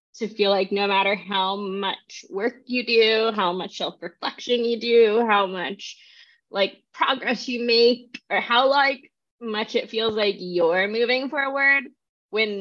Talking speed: 150 wpm